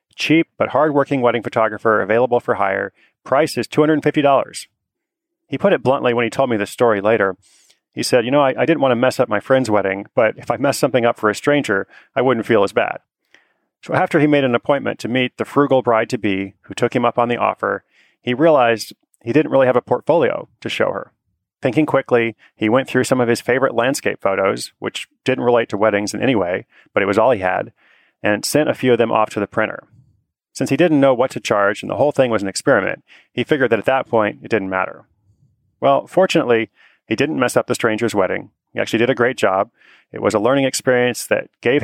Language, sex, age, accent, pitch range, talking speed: English, male, 30-49, American, 110-135 Hz, 230 wpm